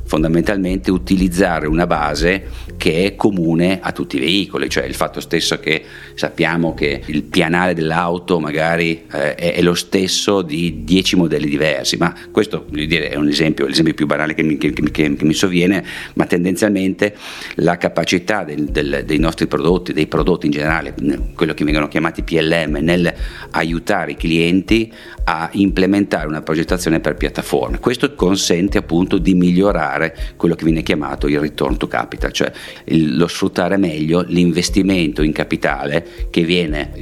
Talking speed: 150 wpm